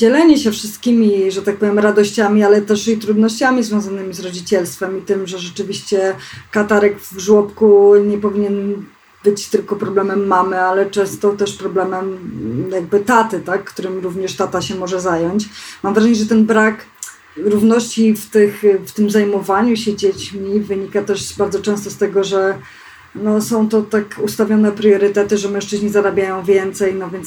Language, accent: Polish, native